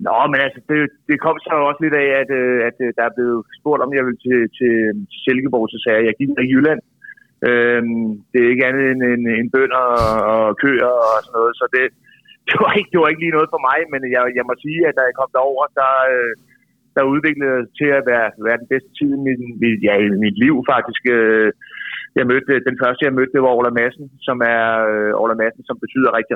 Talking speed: 230 wpm